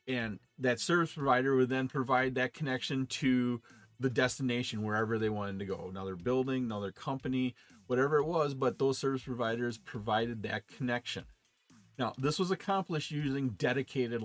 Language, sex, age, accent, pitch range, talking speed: English, male, 40-59, American, 120-165 Hz, 155 wpm